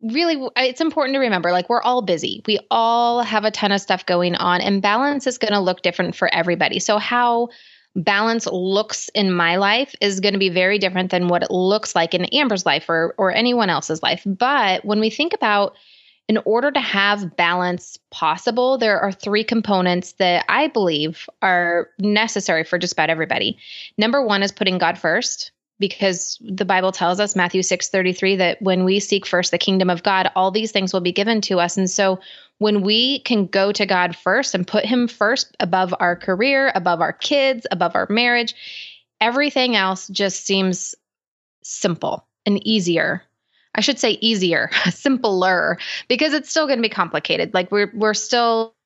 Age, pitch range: 20-39, 185-230 Hz